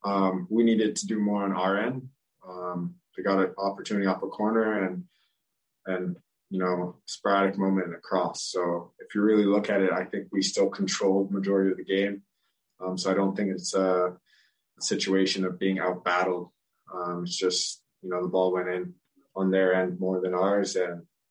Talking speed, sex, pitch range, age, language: 190 wpm, male, 95-105 Hz, 20-39, English